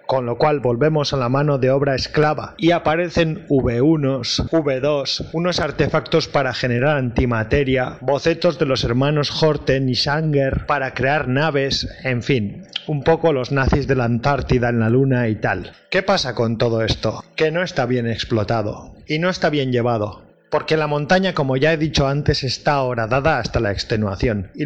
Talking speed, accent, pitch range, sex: 175 wpm, Spanish, 125-155 Hz, male